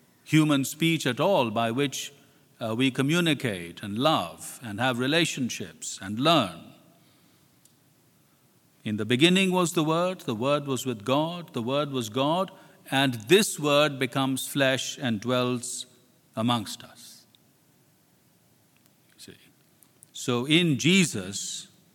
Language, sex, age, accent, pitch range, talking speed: English, male, 50-69, Indian, 120-155 Hz, 120 wpm